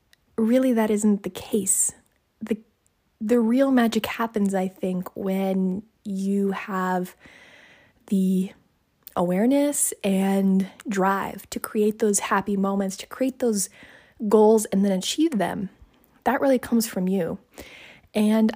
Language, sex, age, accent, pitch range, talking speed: English, female, 20-39, American, 190-230 Hz, 125 wpm